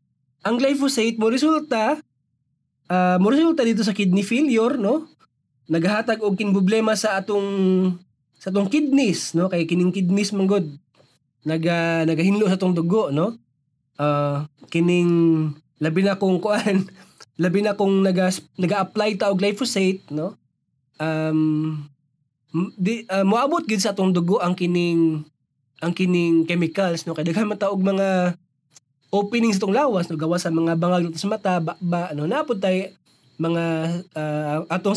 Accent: native